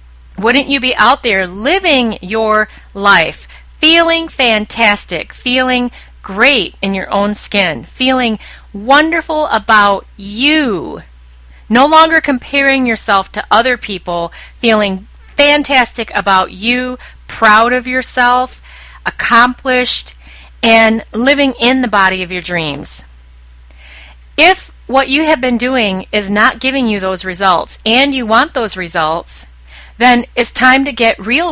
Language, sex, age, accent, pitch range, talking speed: English, female, 30-49, American, 175-255 Hz, 125 wpm